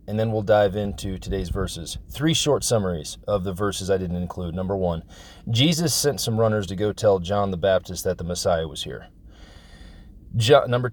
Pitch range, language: 95-120 Hz, English